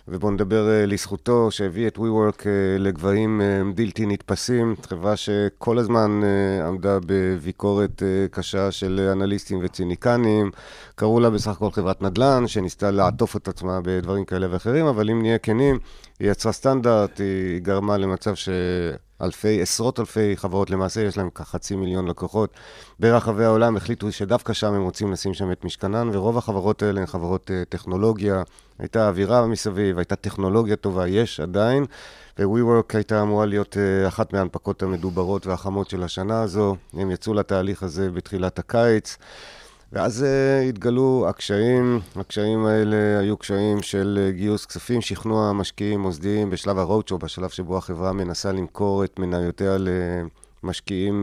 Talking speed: 140 wpm